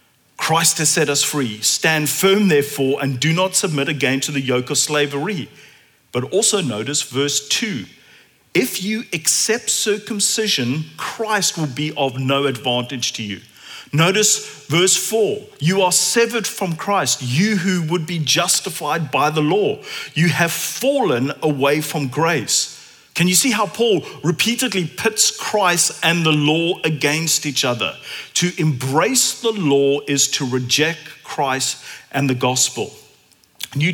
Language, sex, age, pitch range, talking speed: English, male, 40-59, 140-190 Hz, 145 wpm